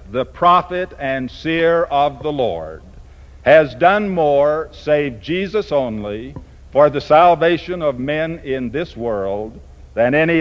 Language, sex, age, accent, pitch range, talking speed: English, male, 60-79, American, 95-160 Hz, 135 wpm